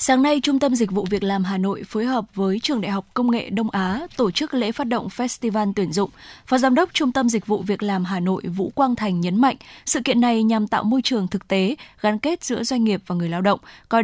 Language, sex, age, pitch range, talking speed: Vietnamese, female, 10-29, 195-245 Hz, 270 wpm